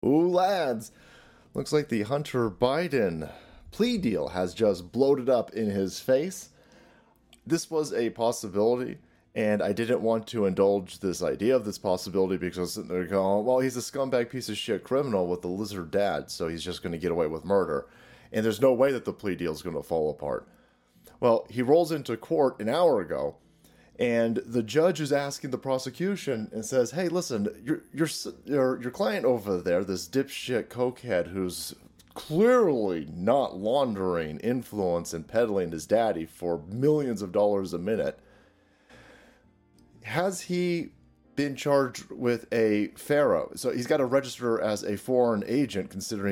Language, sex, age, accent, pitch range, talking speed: English, male, 30-49, American, 100-135 Hz, 170 wpm